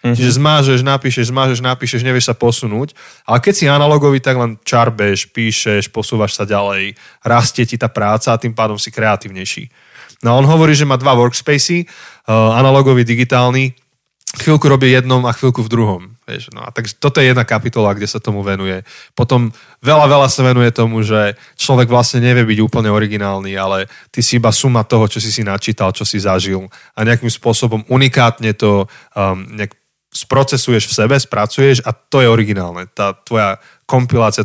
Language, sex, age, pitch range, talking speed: Slovak, male, 20-39, 110-130 Hz, 175 wpm